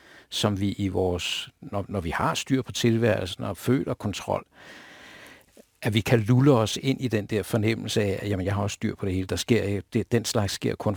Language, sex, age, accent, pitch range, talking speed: Danish, male, 60-79, native, 95-115 Hz, 225 wpm